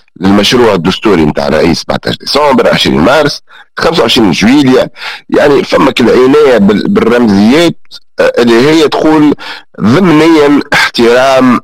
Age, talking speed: 50-69, 100 wpm